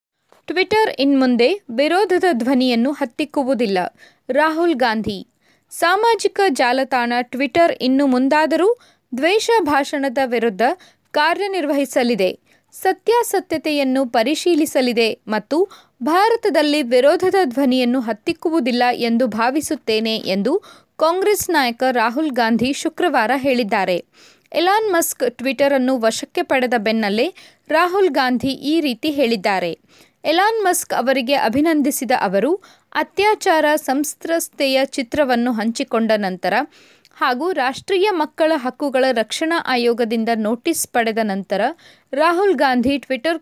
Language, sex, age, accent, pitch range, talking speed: Kannada, female, 20-39, native, 240-330 Hz, 90 wpm